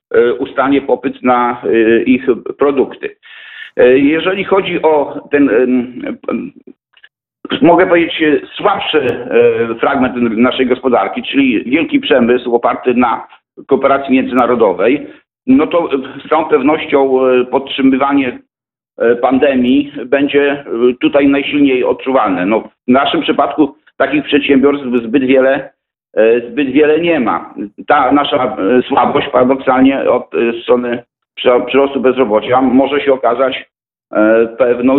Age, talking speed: 50-69, 100 wpm